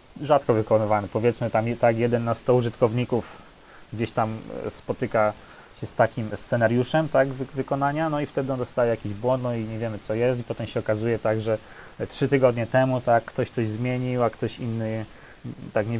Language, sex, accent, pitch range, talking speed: Polish, male, native, 110-125 Hz, 185 wpm